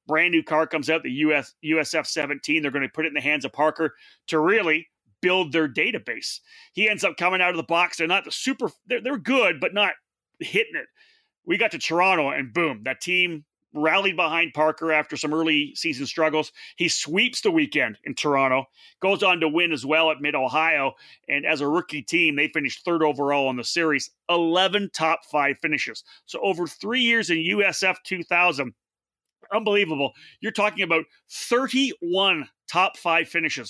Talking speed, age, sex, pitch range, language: 185 wpm, 30-49, male, 145-180 Hz, English